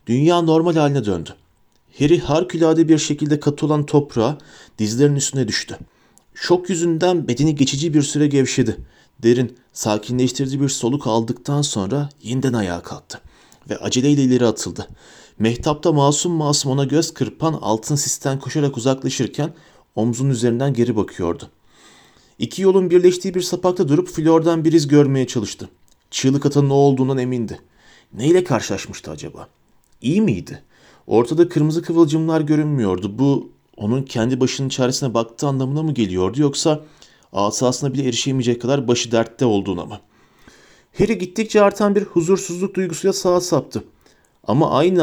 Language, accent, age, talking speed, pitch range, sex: Turkish, native, 30-49, 135 wpm, 120-165 Hz, male